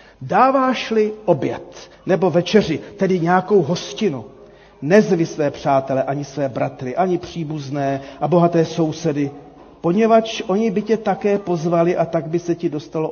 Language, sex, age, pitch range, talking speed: Czech, male, 40-59, 145-210 Hz, 135 wpm